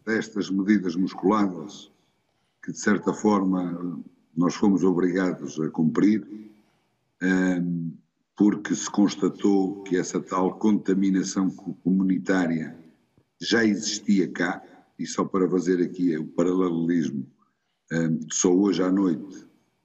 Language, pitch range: Portuguese, 80-100 Hz